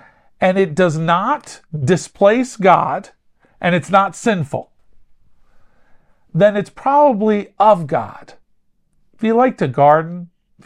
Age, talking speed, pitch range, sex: 40-59, 120 wpm, 170-230 Hz, male